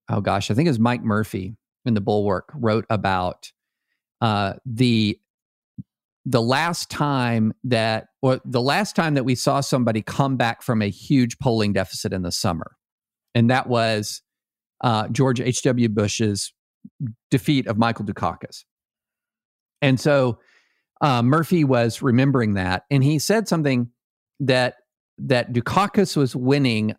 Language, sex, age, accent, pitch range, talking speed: English, male, 50-69, American, 110-140 Hz, 140 wpm